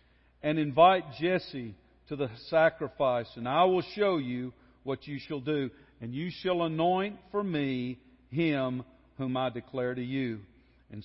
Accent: American